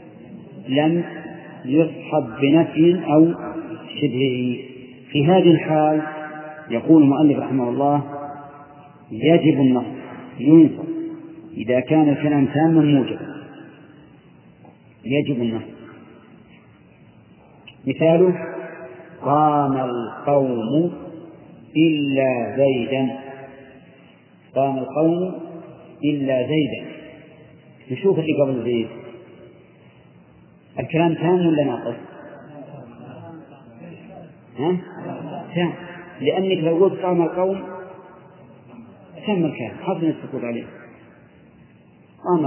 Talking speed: 75 wpm